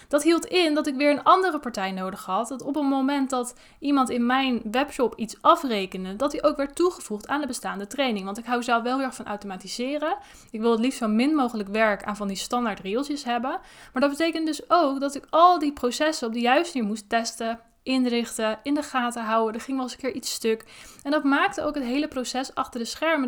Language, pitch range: Dutch, 225-285 Hz